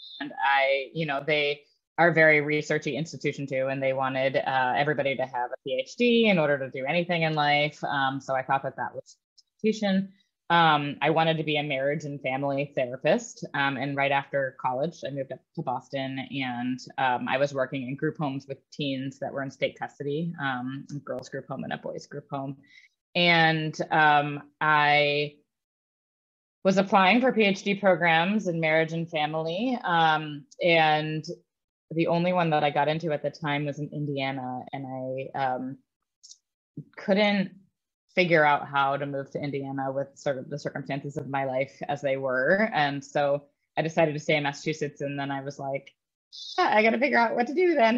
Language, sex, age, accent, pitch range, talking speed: English, female, 20-39, American, 140-165 Hz, 190 wpm